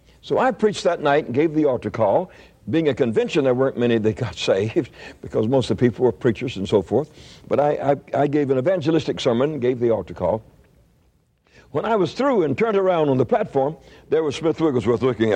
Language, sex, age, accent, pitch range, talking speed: English, male, 60-79, American, 125-200 Hz, 220 wpm